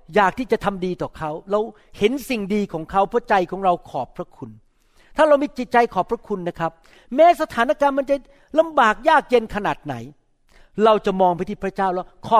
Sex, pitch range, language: male, 185-265 Hz, Thai